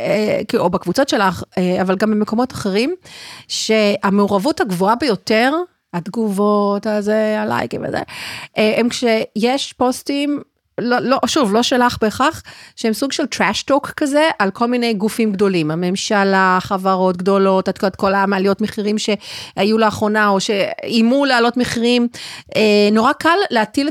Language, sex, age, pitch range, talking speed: Hebrew, female, 40-59, 205-260 Hz, 125 wpm